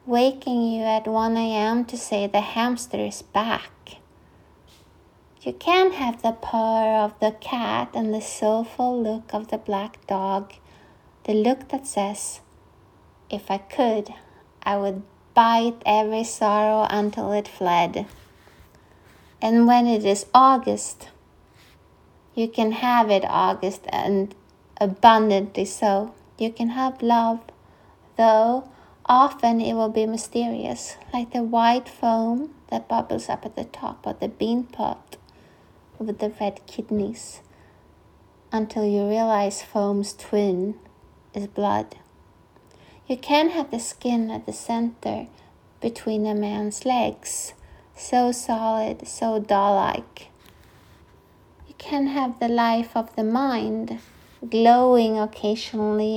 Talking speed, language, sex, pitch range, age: 125 wpm, English, female, 200-235 Hz, 20-39